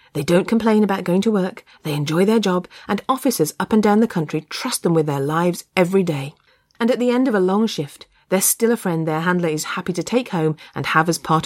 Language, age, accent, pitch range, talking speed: English, 40-59, British, 155-210 Hz, 250 wpm